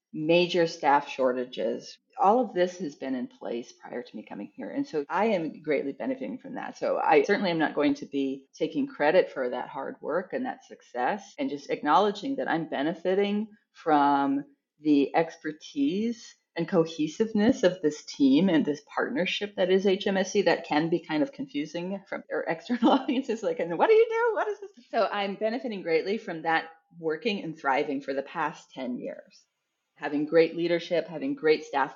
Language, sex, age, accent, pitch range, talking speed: English, female, 30-49, American, 150-235 Hz, 185 wpm